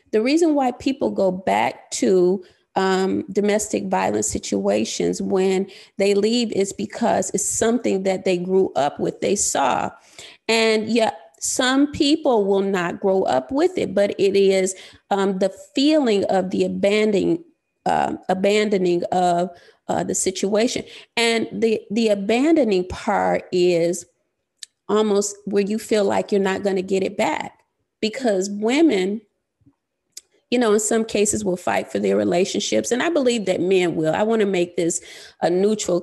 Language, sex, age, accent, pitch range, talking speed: English, female, 30-49, American, 190-235 Hz, 155 wpm